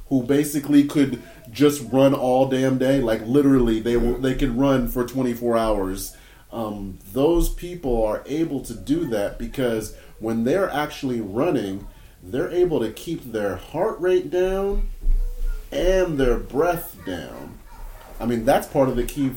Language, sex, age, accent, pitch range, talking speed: English, male, 30-49, American, 105-140 Hz, 150 wpm